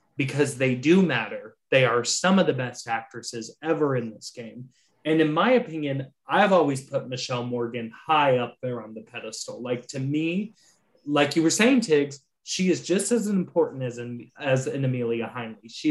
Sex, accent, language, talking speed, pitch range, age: male, American, English, 185 wpm, 125-160 Hz, 20-39